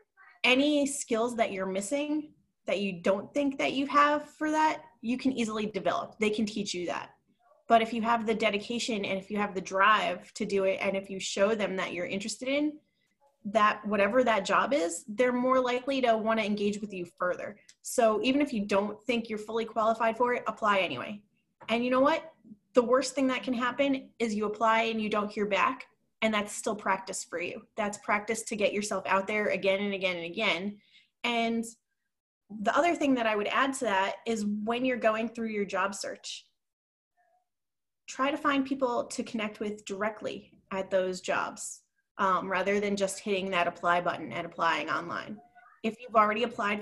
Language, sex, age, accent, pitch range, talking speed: English, female, 20-39, American, 200-245 Hz, 200 wpm